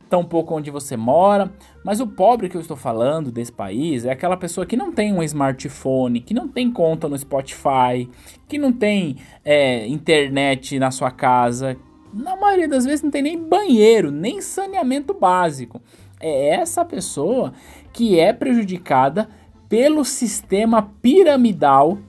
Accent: Brazilian